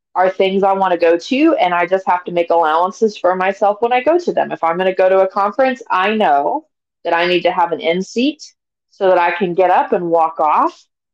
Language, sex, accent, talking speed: English, female, American, 255 wpm